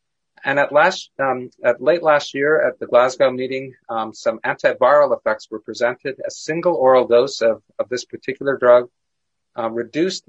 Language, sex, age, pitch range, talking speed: English, male, 40-59, 115-150 Hz, 170 wpm